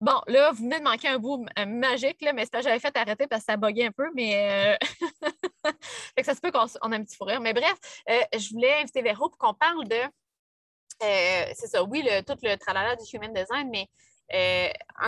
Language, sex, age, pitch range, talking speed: French, female, 20-39, 195-260 Hz, 225 wpm